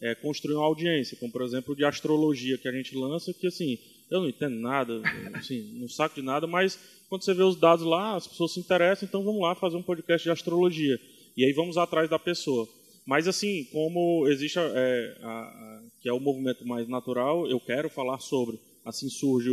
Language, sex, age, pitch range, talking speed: Portuguese, male, 20-39, 120-175 Hz, 210 wpm